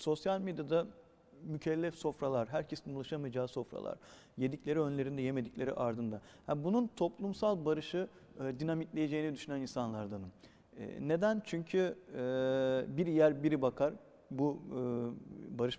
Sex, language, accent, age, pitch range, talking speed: male, Turkish, native, 50-69, 135-175 Hz, 115 wpm